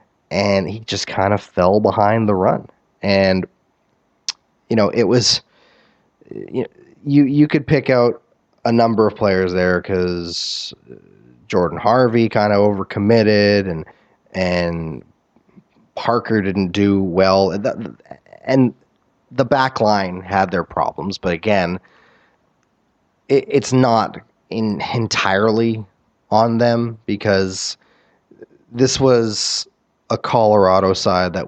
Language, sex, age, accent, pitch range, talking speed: English, male, 20-39, American, 90-110 Hz, 120 wpm